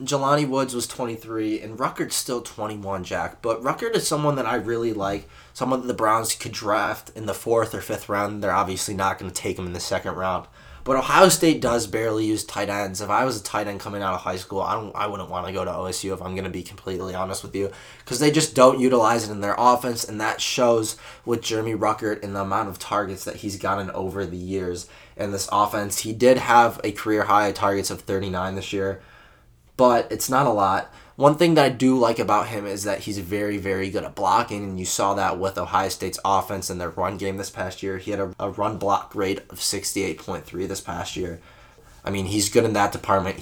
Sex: male